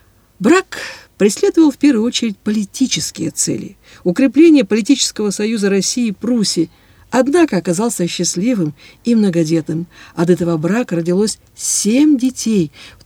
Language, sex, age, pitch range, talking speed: Russian, female, 50-69, 170-225 Hz, 115 wpm